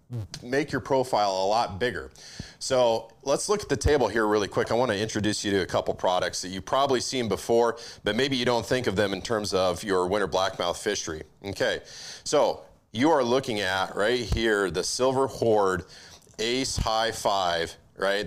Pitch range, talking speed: 95-120 Hz, 190 wpm